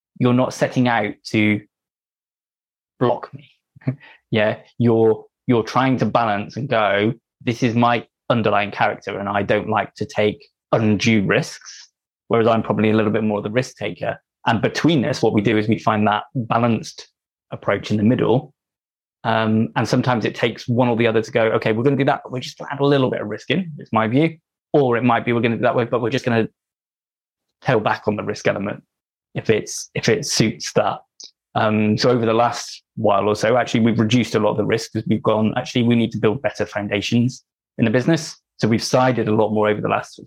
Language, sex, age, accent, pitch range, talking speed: English, male, 20-39, British, 110-125 Hz, 220 wpm